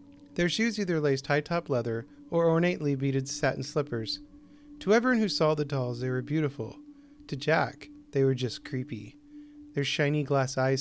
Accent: American